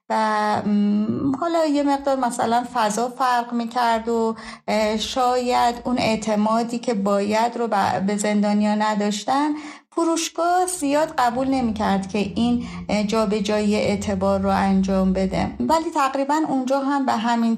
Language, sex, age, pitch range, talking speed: Persian, female, 30-49, 205-250 Hz, 125 wpm